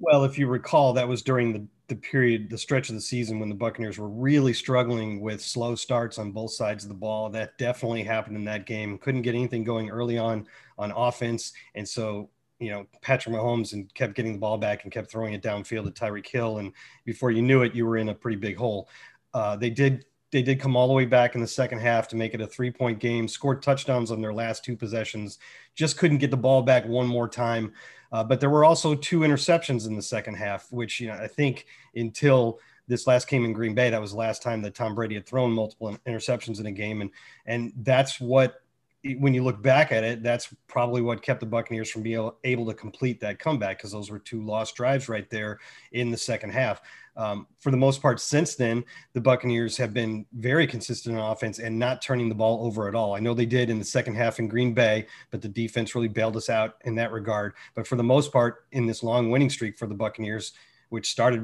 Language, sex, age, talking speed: English, male, 30-49, 240 wpm